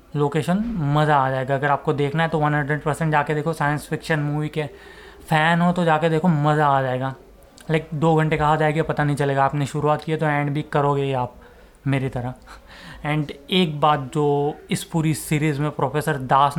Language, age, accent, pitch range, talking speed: Hindi, 20-39, native, 145-170 Hz, 205 wpm